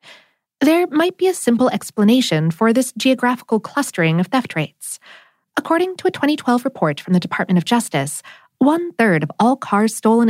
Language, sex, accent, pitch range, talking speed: English, female, American, 180-270 Hz, 165 wpm